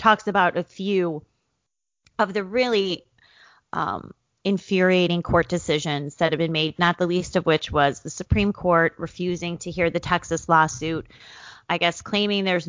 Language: English